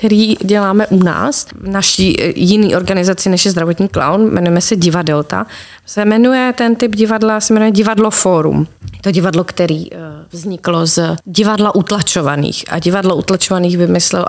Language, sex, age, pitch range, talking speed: Slovak, female, 30-49, 175-205 Hz, 145 wpm